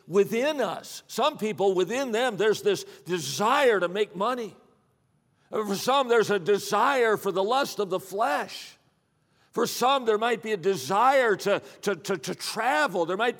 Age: 50-69